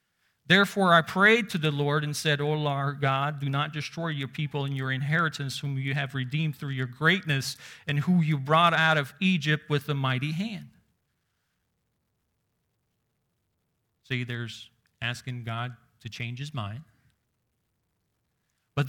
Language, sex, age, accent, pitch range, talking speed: English, male, 40-59, American, 130-160 Hz, 145 wpm